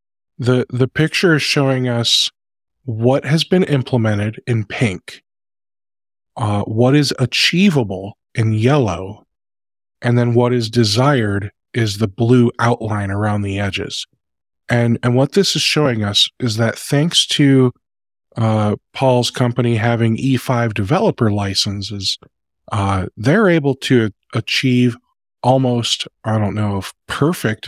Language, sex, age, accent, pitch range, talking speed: English, male, 20-39, American, 105-135 Hz, 130 wpm